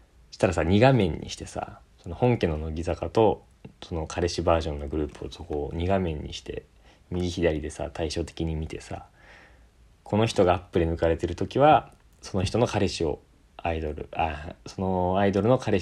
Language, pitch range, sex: Japanese, 80-100 Hz, male